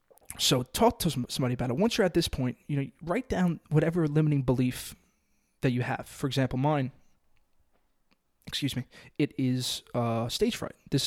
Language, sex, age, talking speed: English, male, 20-39, 175 wpm